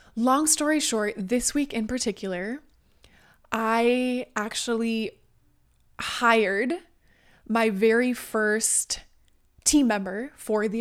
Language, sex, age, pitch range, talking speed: English, female, 20-39, 205-235 Hz, 95 wpm